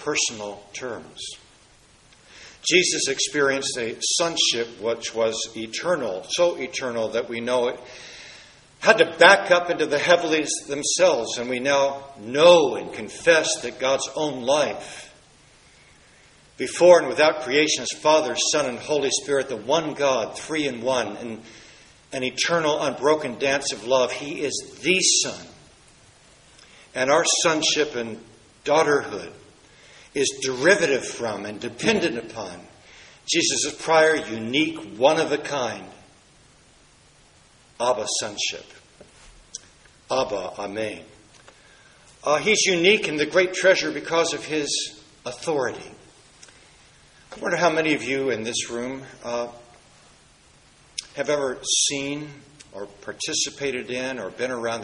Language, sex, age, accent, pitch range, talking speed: English, male, 60-79, American, 120-155 Hz, 120 wpm